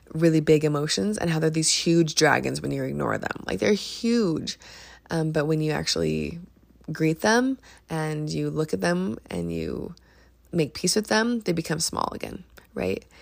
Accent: American